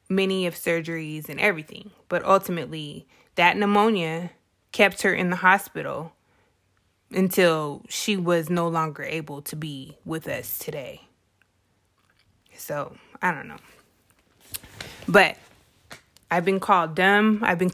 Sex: female